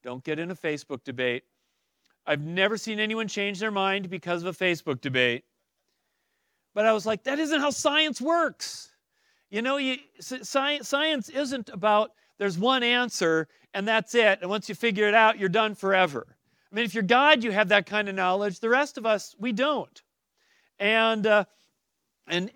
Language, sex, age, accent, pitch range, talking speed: English, male, 40-59, American, 200-255 Hz, 185 wpm